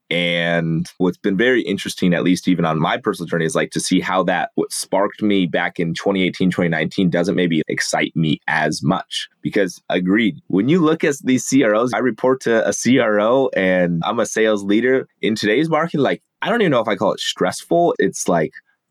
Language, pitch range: English, 80-95 Hz